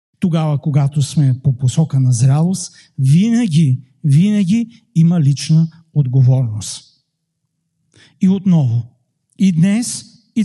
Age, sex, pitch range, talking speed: 60-79, male, 135-180 Hz, 100 wpm